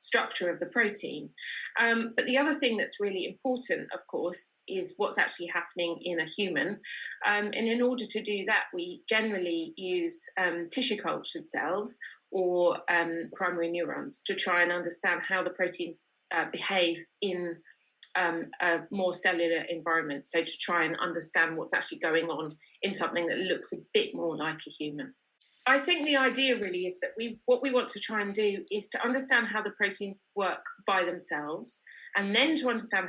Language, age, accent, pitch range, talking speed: English, 30-49, British, 170-230 Hz, 185 wpm